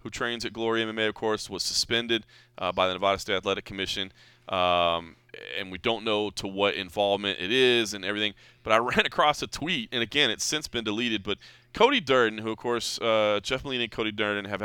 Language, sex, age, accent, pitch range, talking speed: English, male, 30-49, American, 100-125 Hz, 215 wpm